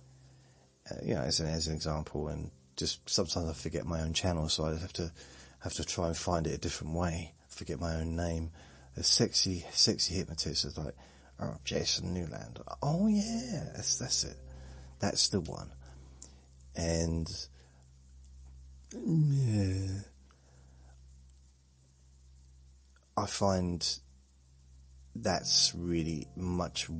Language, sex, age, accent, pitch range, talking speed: English, male, 30-49, British, 65-85 Hz, 125 wpm